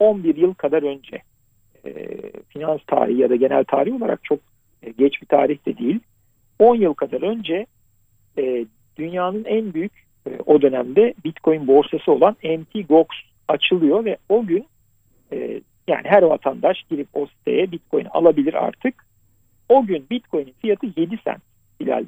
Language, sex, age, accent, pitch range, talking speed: Turkish, male, 50-69, native, 125-200 Hz, 145 wpm